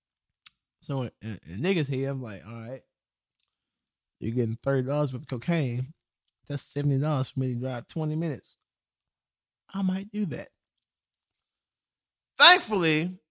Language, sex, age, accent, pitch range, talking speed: English, male, 20-39, American, 135-175 Hz, 125 wpm